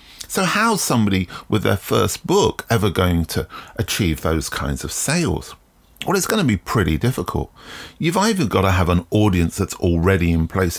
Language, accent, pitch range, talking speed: English, British, 90-125 Hz, 185 wpm